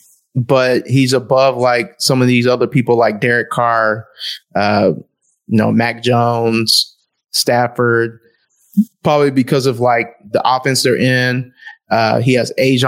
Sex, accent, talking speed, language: male, American, 140 wpm, English